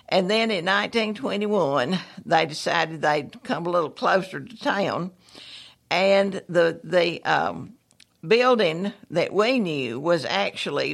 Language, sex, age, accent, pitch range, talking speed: English, female, 60-79, American, 165-205 Hz, 125 wpm